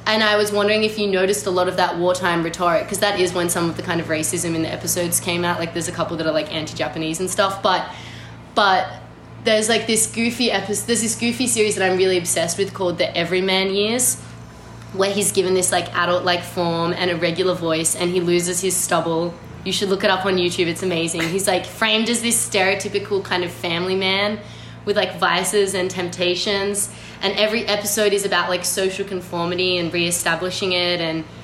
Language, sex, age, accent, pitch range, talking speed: English, female, 20-39, Australian, 175-200 Hz, 210 wpm